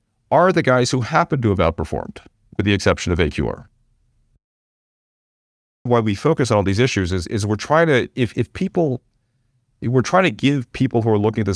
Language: English